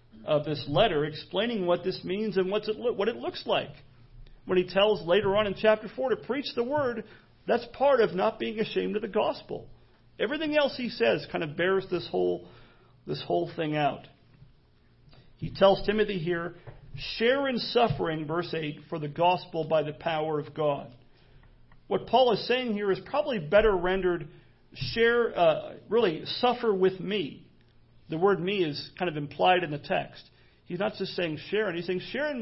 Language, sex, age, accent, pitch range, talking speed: English, male, 40-59, American, 155-225 Hz, 185 wpm